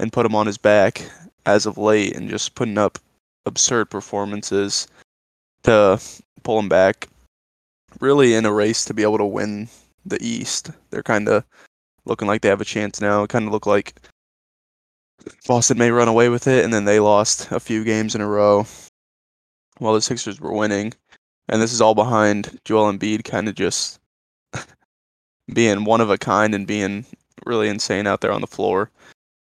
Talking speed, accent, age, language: 185 wpm, American, 20-39, English